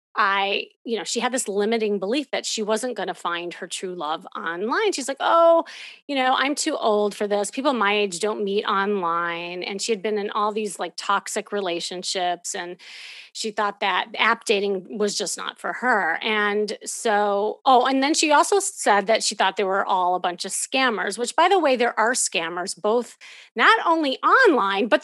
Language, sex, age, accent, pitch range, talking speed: English, female, 30-49, American, 200-260 Hz, 205 wpm